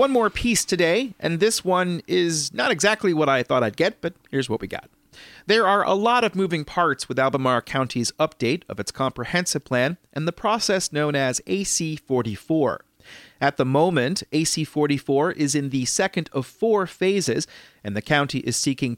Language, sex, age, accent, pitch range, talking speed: English, male, 40-59, American, 130-185 Hz, 180 wpm